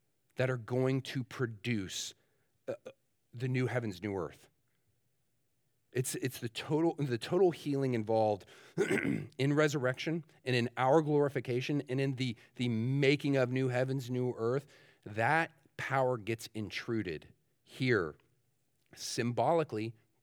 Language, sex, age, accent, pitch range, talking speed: English, male, 40-59, American, 105-130 Hz, 120 wpm